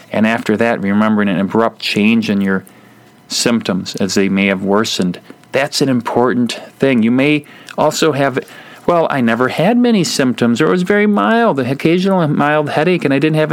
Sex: male